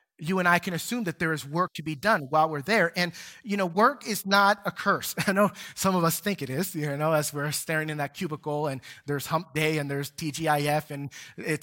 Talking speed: 250 wpm